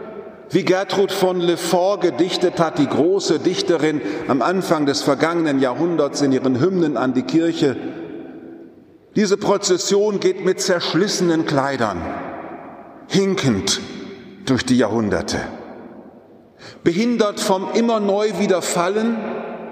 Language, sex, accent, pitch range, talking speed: German, male, German, 130-205 Hz, 105 wpm